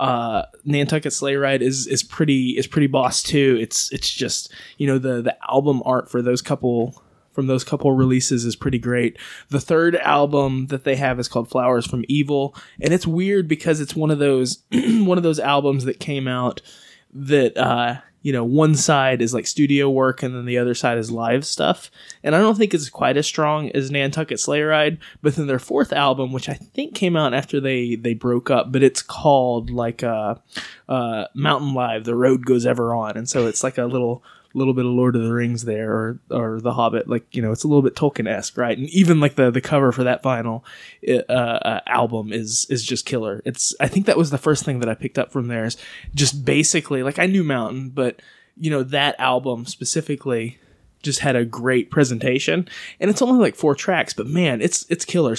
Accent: American